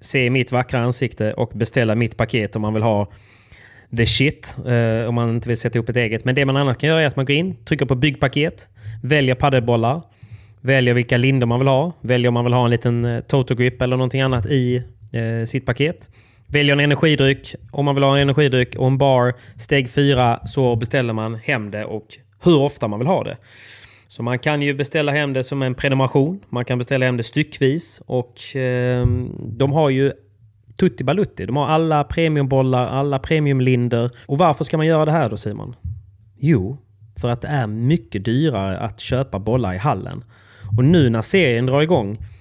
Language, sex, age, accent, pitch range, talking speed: Swedish, male, 20-39, native, 110-140 Hz, 200 wpm